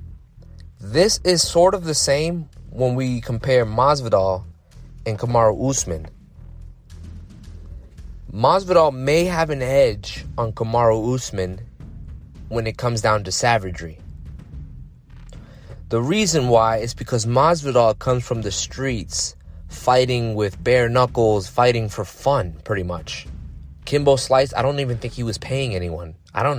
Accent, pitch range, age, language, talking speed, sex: American, 90-125 Hz, 20-39, English, 130 wpm, male